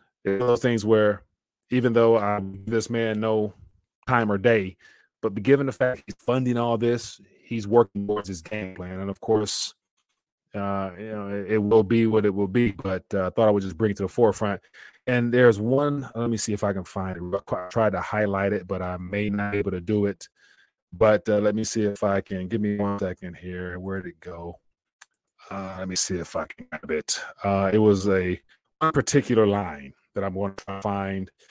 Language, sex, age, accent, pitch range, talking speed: English, male, 30-49, American, 100-115 Hz, 215 wpm